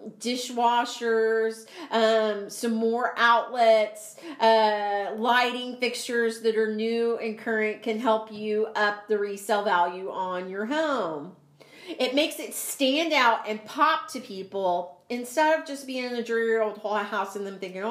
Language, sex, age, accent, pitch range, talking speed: English, female, 40-59, American, 210-255 Hz, 150 wpm